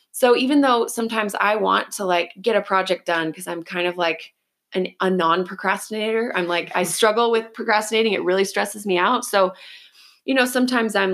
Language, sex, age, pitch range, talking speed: English, female, 20-39, 175-225 Hz, 190 wpm